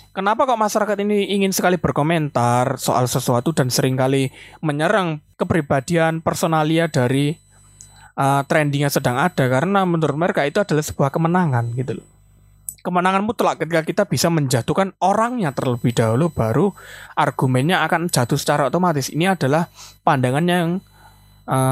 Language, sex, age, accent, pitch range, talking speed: Indonesian, male, 20-39, native, 125-165 Hz, 135 wpm